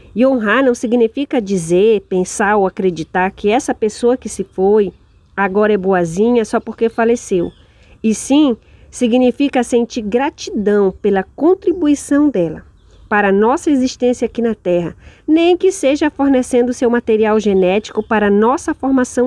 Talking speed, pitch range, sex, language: 145 wpm, 190-245 Hz, female, Portuguese